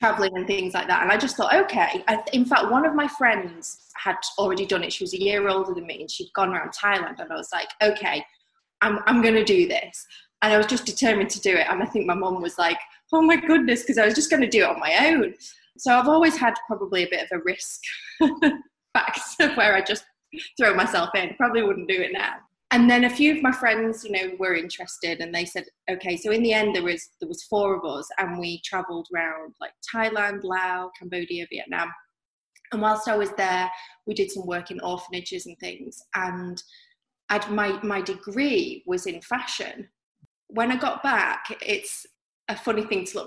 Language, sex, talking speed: English, female, 225 wpm